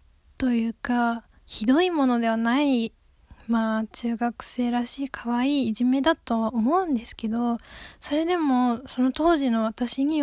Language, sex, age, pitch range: Japanese, female, 10-29, 235-285 Hz